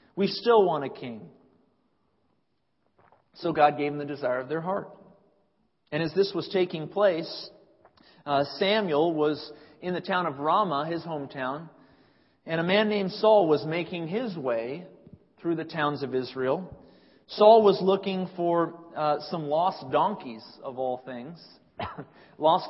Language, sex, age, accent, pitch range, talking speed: English, male, 40-59, American, 145-190 Hz, 150 wpm